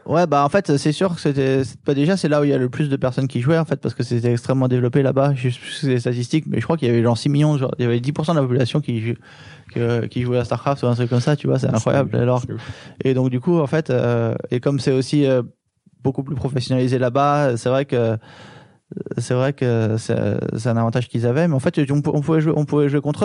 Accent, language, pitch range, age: French, French, 120-145 Hz, 20-39